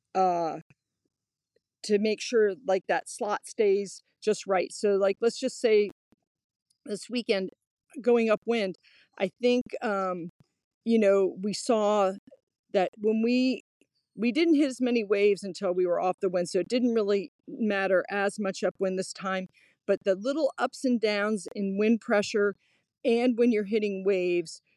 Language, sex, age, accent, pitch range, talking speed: English, female, 40-59, American, 185-225 Hz, 160 wpm